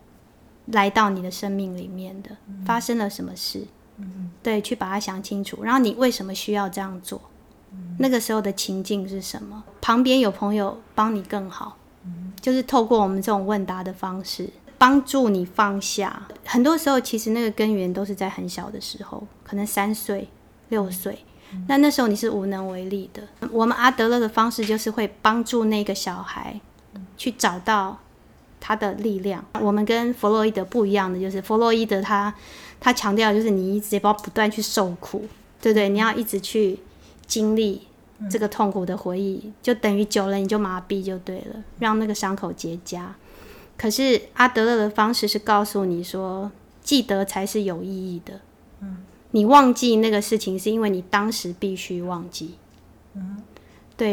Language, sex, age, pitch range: Chinese, female, 20-39, 195-225 Hz